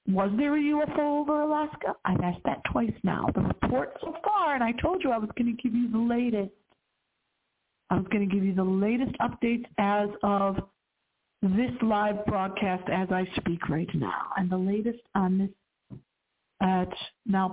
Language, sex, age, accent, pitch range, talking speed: English, female, 50-69, American, 190-240 Hz, 180 wpm